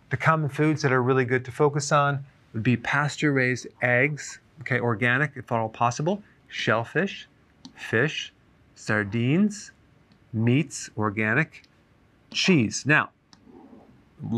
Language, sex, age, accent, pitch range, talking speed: English, male, 40-59, American, 120-140 Hz, 115 wpm